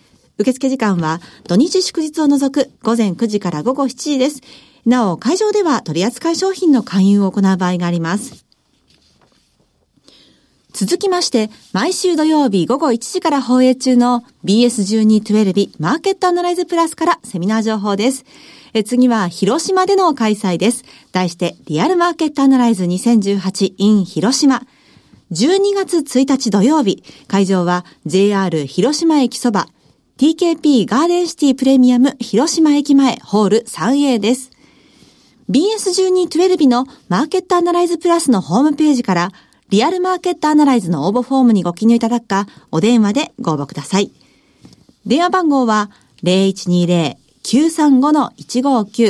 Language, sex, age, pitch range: Japanese, female, 40-59, 200-305 Hz